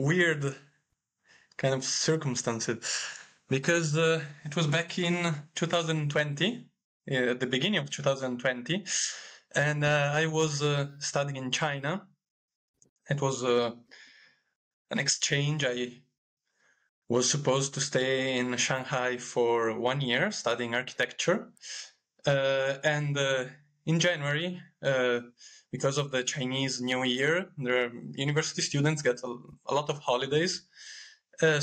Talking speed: 120 wpm